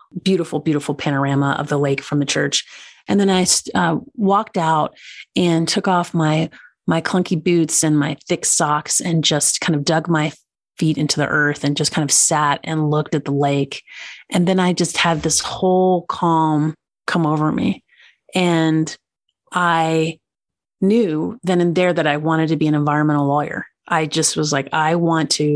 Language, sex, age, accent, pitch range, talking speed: English, female, 30-49, American, 150-175 Hz, 185 wpm